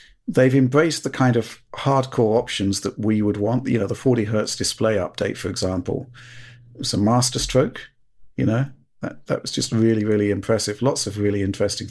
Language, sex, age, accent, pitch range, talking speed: English, male, 40-59, British, 100-120 Hz, 180 wpm